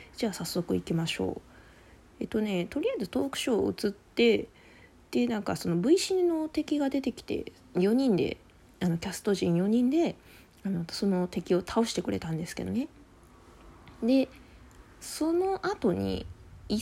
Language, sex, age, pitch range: Japanese, female, 20-39, 180-265 Hz